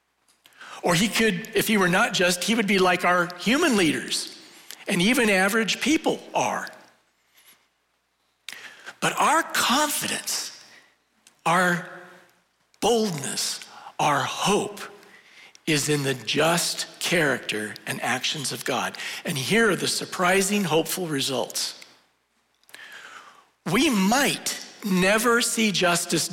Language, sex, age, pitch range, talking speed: English, male, 60-79, 165-225 Hz, 110 wpm